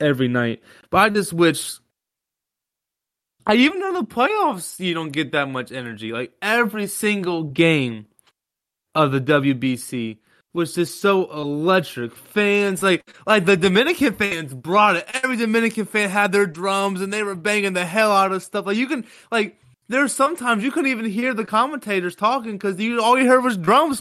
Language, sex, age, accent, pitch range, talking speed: English, male, 20-39, American, 165-215 Hz, 175 wpm